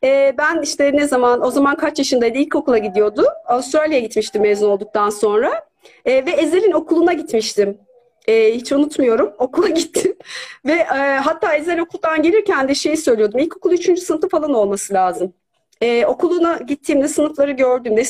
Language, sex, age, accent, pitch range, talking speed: Turkish, female, 40-59, native, 225-285 Hz, 155 wpm